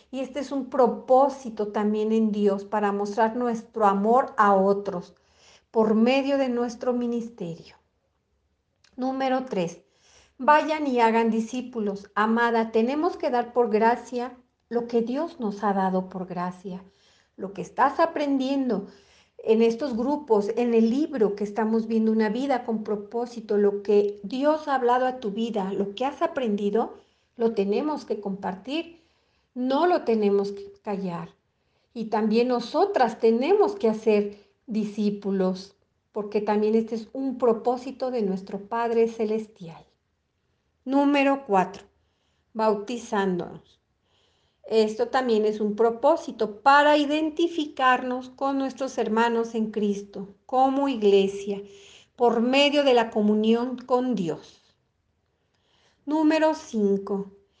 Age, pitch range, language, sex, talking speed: 50-69, 205-260 Hz, Spanish, female, 125 wpm